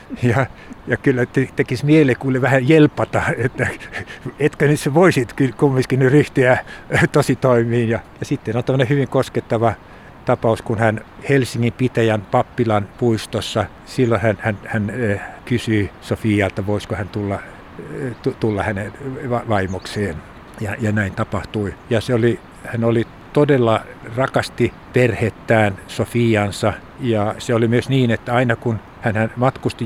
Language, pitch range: Finnish, 110-130 Hz